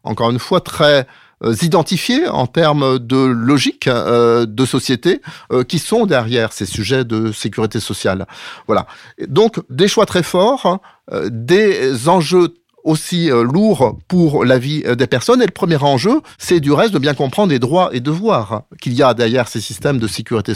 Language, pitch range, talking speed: French, 115-165 Hz, 180 wpm